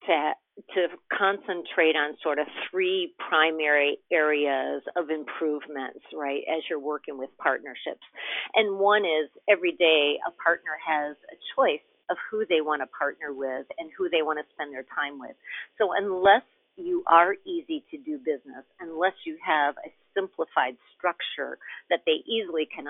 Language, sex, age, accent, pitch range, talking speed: English, female, 50-69, American, 155-230 Hz, 160 wpm